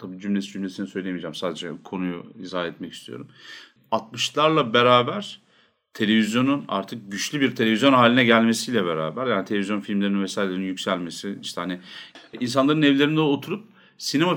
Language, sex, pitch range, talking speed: Turkish, male, 100-145 Hz, 125 wpm